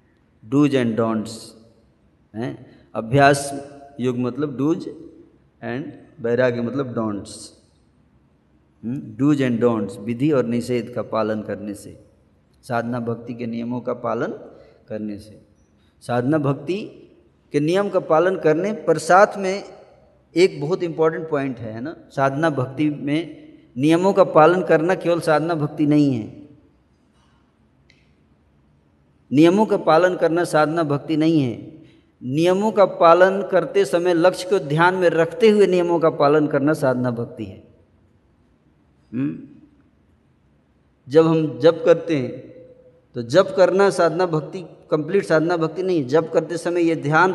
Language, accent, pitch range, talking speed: Hindi, native, 120-175 Hz, 130 wpm